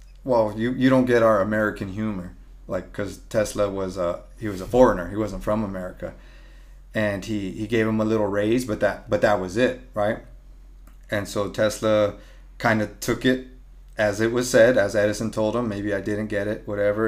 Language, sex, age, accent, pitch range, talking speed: English, male, 30-49, American, 105-125 Hz, 200 wpm